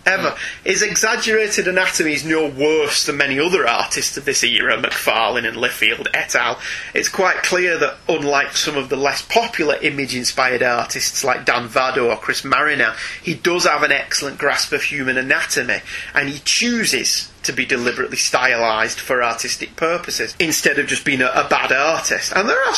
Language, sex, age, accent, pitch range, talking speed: English, male, 30-49, British, 140-185 Hz, 175 wpm